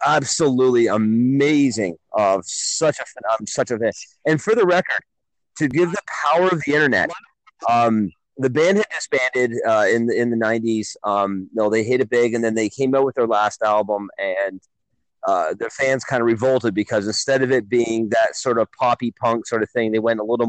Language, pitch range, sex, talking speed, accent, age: English, 115-145 Hz, male, 195 wpm, American, 30-49